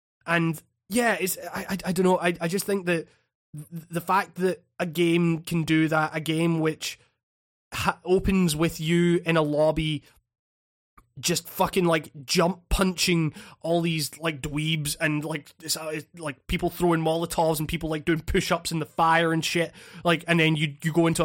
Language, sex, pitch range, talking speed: English, male, 155-175 Hz, 185 wpm